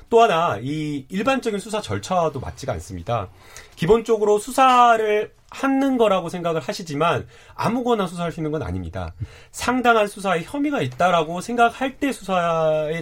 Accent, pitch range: native, 130-195 Hz